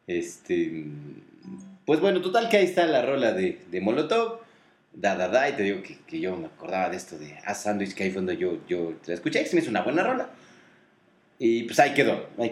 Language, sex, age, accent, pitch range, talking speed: Spanish, male, 30-49, Mexican, 110-175 Hz, 235 wpm